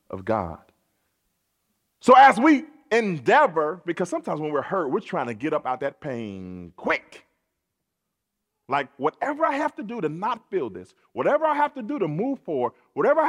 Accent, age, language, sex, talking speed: American, 40-59, English, male, 180 wpm